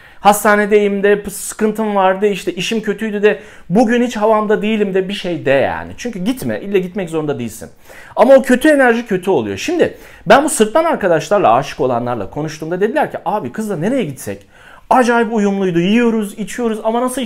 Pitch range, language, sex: 165-235 Hz, Turkish, male